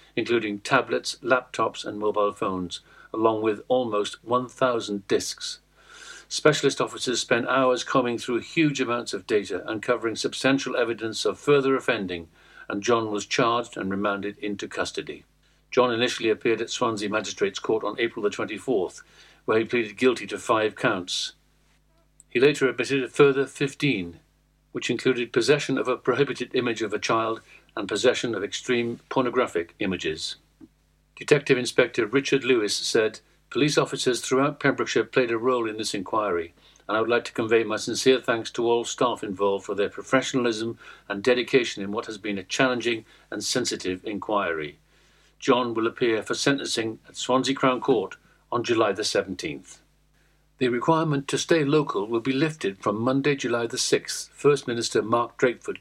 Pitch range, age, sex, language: 110-130 Hz, 60-79, male, English